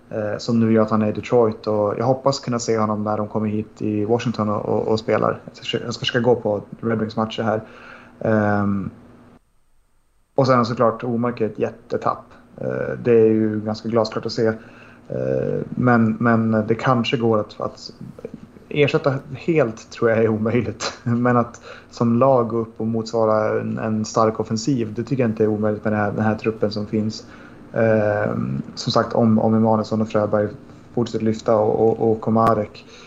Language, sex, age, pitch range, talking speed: Swedish, male, 30-49, 110-120 Hz, 185 wpm